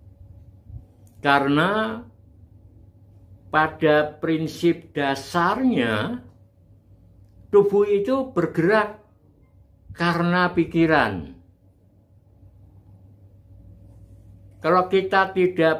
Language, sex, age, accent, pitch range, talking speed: Indonesian, male, 60-79, native, 95-165 Hz, 45 wpm